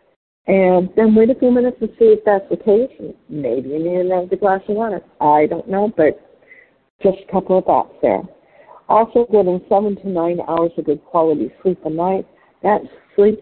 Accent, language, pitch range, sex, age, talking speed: American, English, 165-210 Hz, female, 60-79, 190 wpm